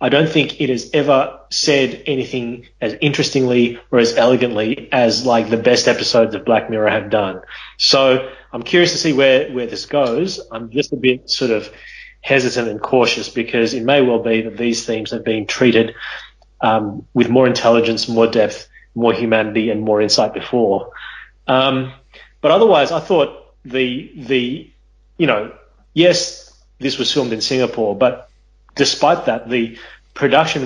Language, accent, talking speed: English, Australian, 165 wpm